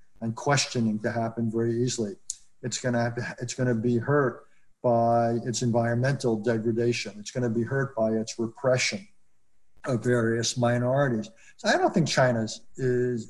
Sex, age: male, 50-69